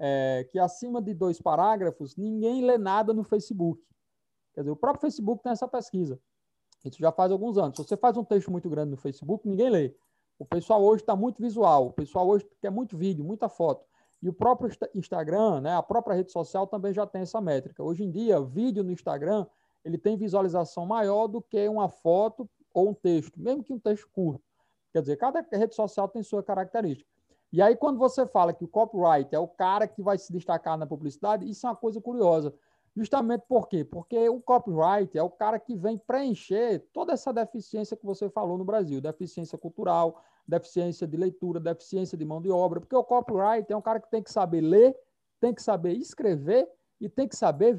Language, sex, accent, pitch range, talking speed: Portuguese, male, Brazilian, 175-230 Hz, 205 wpm